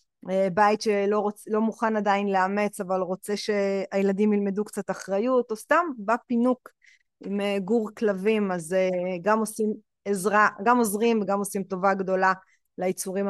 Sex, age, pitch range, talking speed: female, 20-39, 190-230 Hz, 135 wpm